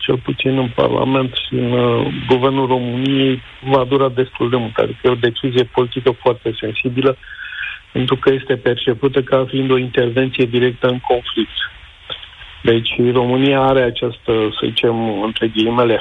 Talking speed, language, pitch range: 140 wpm, Romanian, 115-130 Hz